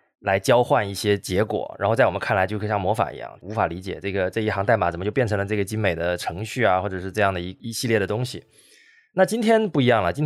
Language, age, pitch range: Chinese, 20-39, 95-130 Hz